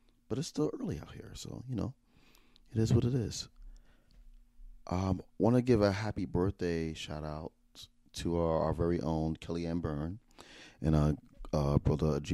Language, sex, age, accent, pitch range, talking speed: English, male, 30-49, American, 70-90 Hz, 165 wpm